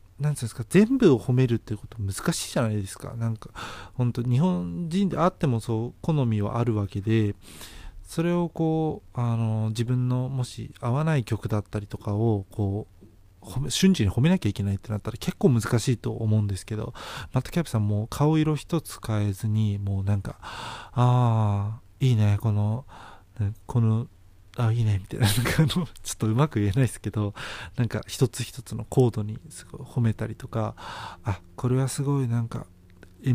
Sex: male